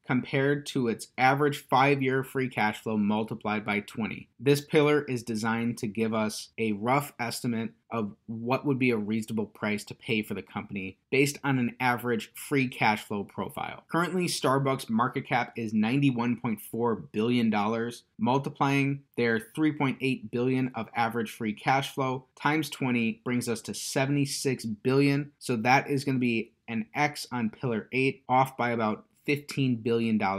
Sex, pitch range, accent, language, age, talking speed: male, 115-145 Hz, American, English, 30-49, 160 wpm